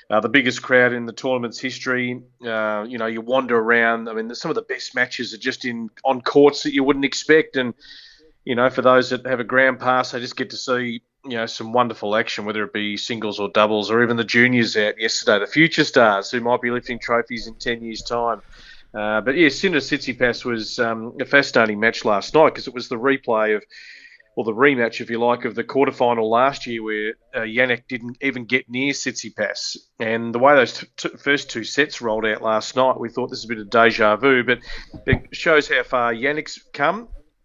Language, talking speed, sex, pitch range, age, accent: English, 230 wpm, male, 115-130 Hz, 30-49, Australian